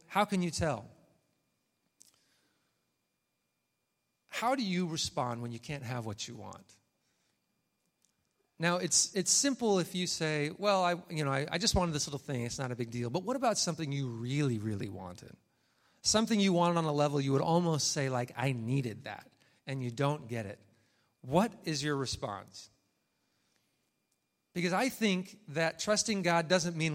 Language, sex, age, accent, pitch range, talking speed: English, male, 40-59, American, 130-190 Hz, 170 wpm